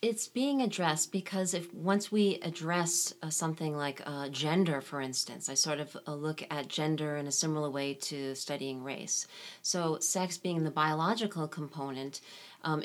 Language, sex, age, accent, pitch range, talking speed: English, female, 30-49, American, 145-170 Hz, 170 wpm